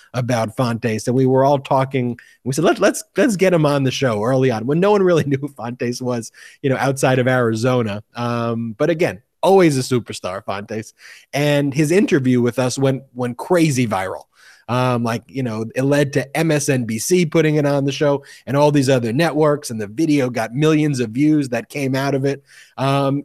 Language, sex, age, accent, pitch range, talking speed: English, male, 30-49, American, 125-155 Hz, 205 wpm